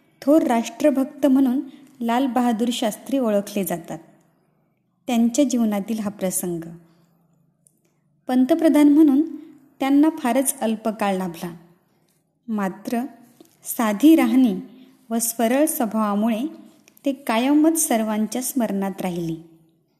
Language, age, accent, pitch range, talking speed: Marathi, 20-39, native, 195-270 Hz, 85 wpm